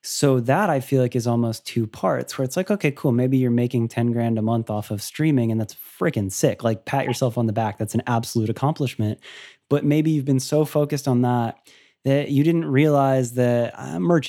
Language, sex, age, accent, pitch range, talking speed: English, male, 20-39, American, 120-150 Hz, 225 wpm